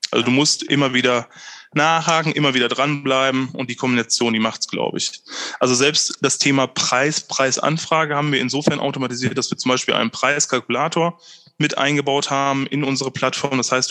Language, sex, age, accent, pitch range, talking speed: German, male, 20-39, German, 125-140 Hz, 175 wpm